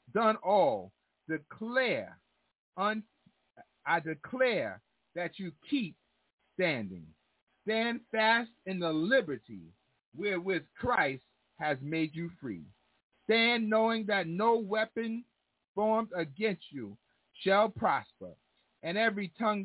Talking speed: 100 wpm